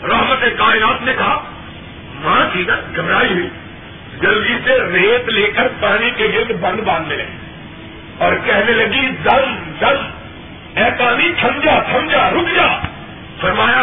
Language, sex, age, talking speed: Urdu, male, 50-69, 140 wpm